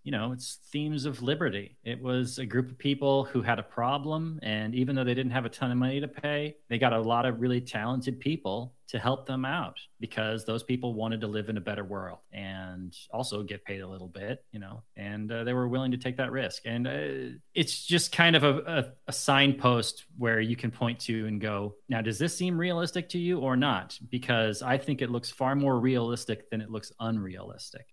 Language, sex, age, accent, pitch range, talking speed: English, male, 30-49, American, 110-140 Hz, 230 wpm